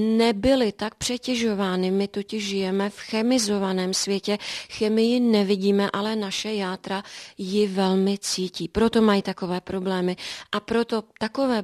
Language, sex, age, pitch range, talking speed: Czech, female, 30-49, 200-220 Hz, 125 wpm